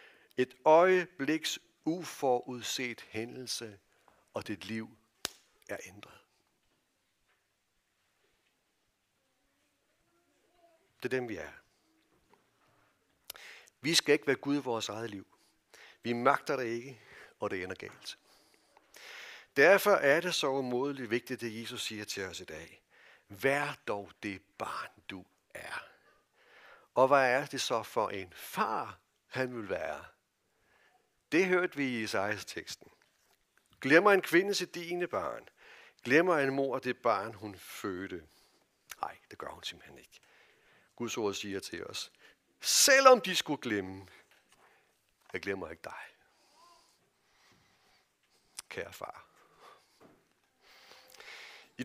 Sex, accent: male, native